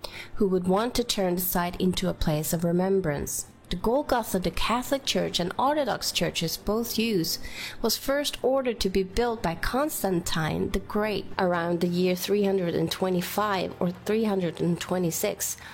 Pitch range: 170-220 Hz